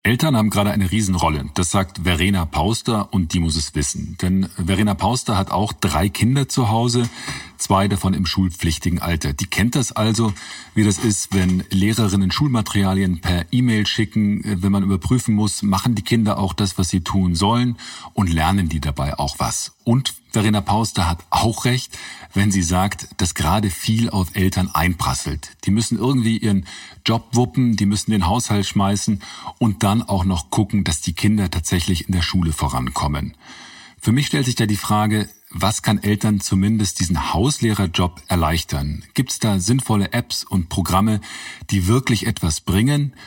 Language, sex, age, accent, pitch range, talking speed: German, male, 40-59, German, 90-110 Hz, 170 wpm